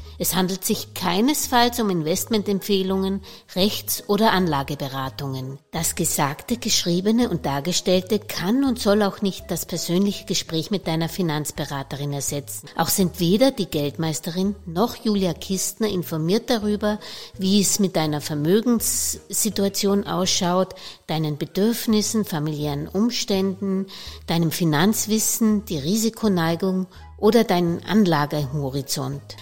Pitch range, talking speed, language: 160-210 Hz, 110 wpm, German